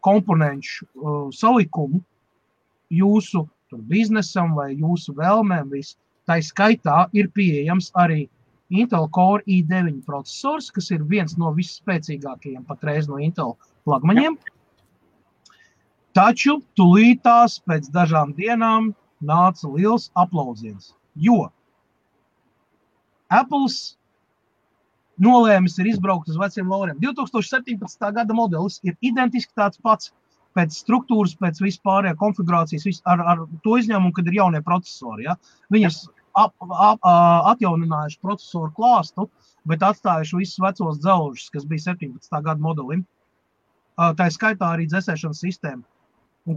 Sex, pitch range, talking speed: male, 160-210 Hz, 115 wpm